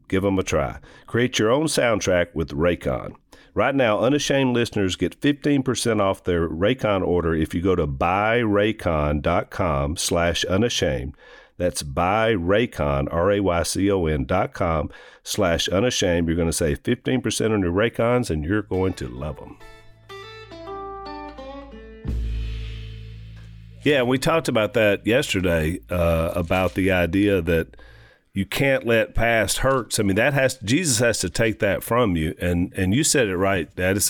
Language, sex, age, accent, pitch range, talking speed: English, male, 50-69, American, 85-115 Hz, 145 wpm